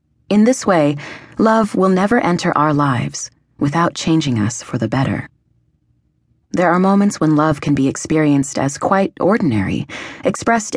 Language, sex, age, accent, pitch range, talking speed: English, female, 30-49, American, 145-190 Hz, 150 wpm